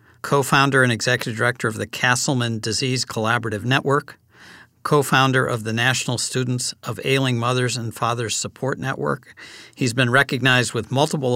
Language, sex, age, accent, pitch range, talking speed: English, male, 50-69, American, 115-135 Hz, 145 wpm